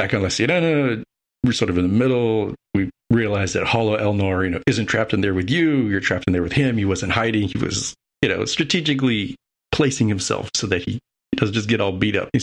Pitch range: 95-125 Hz